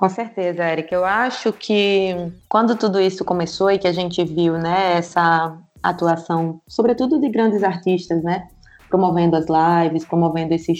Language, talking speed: Portuguese, 155 wpm